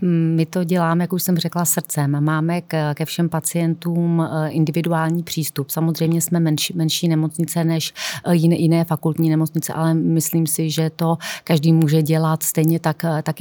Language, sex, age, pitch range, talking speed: Czech, female, 30-49, 150-165 Hz, 150 wpm